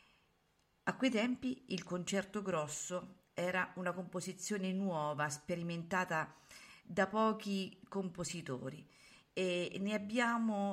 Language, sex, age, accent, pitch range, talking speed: Italian, female, 50-69, native, 155-210 Hz, 95 wpm